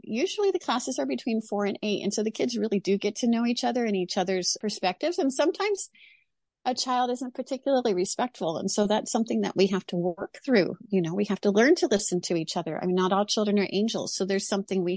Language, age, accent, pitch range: English, 40-59, American, 185-235 Hz